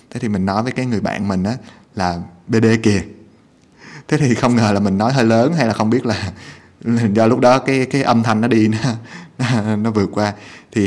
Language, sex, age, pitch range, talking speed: Vietnamese, male, 20-39, 100-120 Hz, 225 wpm